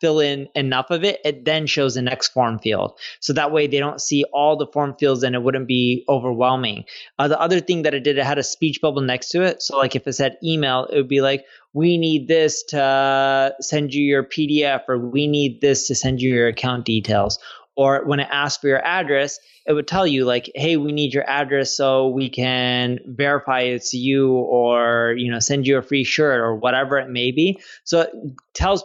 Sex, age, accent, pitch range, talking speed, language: male, 20-39, American, 130-160 Hz, 225 wpm, English